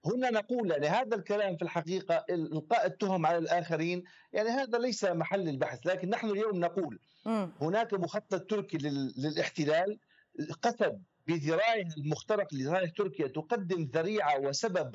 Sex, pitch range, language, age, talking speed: male, 160-210 Hz, Arabic, 50-69, 130 wpm